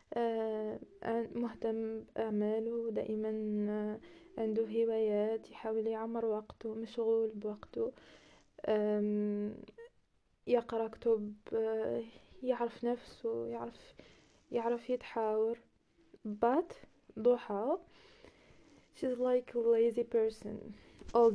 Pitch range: 215-240 Hz